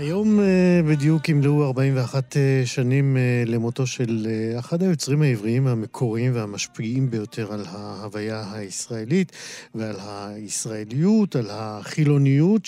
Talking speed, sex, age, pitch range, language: 100 wpm, male, 50-69, 115-145 Hz, Hebrew